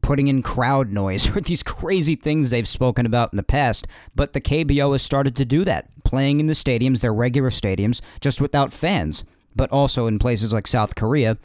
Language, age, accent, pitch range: English, 40-59, American, 115-145 Hz